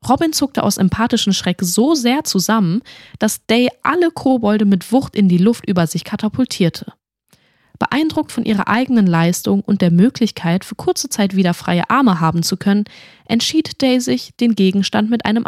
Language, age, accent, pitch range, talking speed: German, 10-29, German, 180-235 Hz, 170 wpm